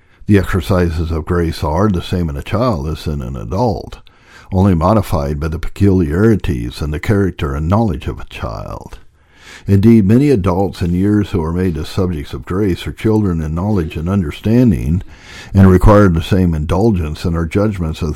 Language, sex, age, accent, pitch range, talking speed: English, male, 60-79, American, 85-105 Hz, 180 wpm